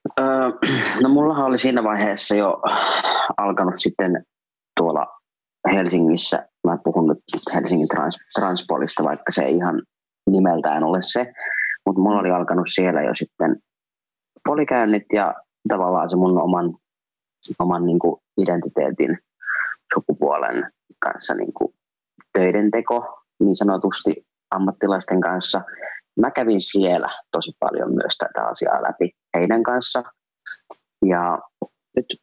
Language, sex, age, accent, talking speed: Finnish, male, 30-49, native, 110 wpm